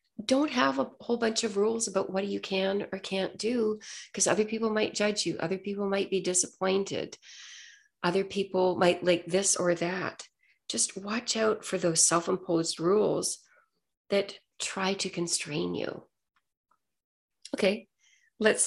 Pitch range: 180-225 Hz